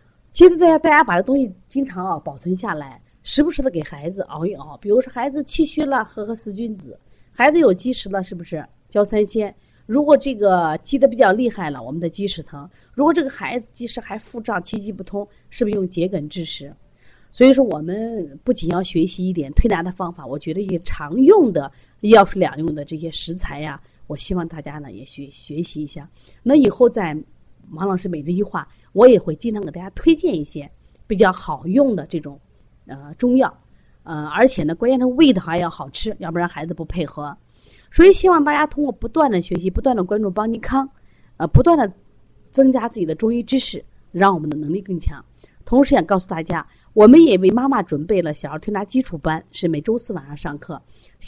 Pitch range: 165-245 Hz